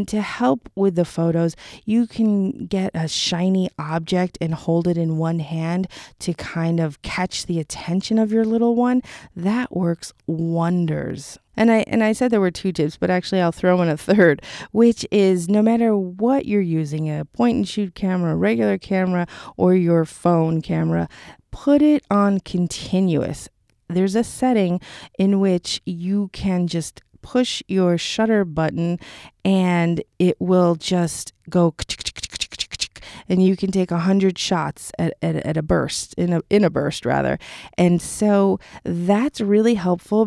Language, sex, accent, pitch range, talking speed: English, female, American, 165-205 Hz, 160 wpm